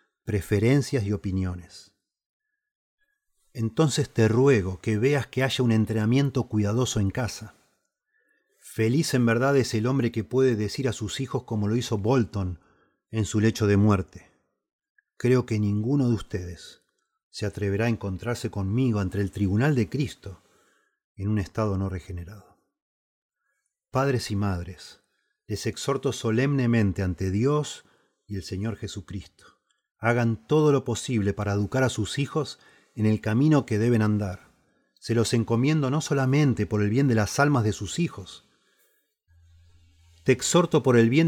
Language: Spanish